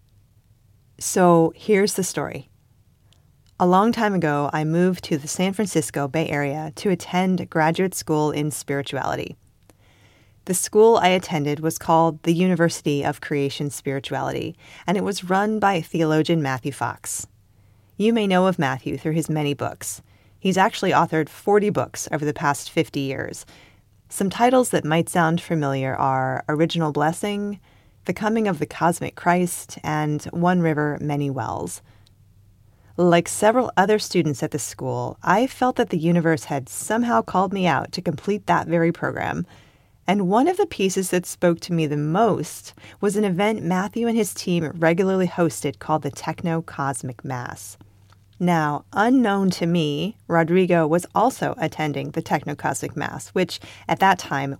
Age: 30-49